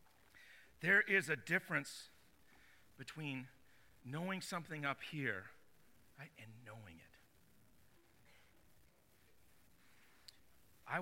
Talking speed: 70 wpm